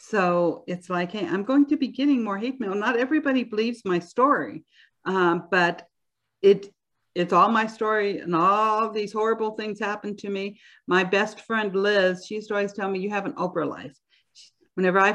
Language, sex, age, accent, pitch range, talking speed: English, female, 50-69, American, 185-230 Hz, 190 wpm